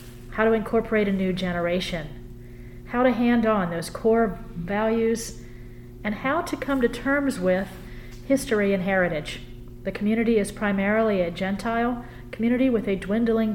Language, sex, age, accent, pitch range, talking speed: English, female, 40-59, American, 160-225 Hz, 145 wpm